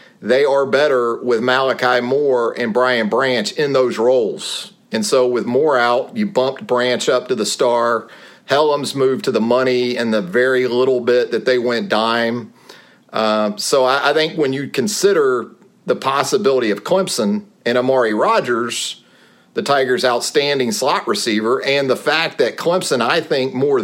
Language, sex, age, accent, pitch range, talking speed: English, male, 40-59, American, 125-150 Hz, 165 wpm